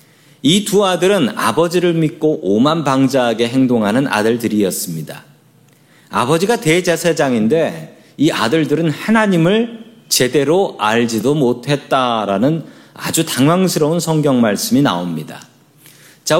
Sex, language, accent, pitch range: male, Korean, native, 115-170 Hz